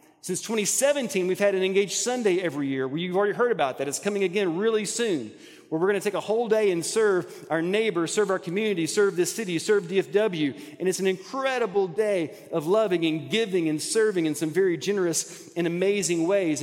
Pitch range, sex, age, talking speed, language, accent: 155-210 Hz, male, 30-49, 205 wpm, English, American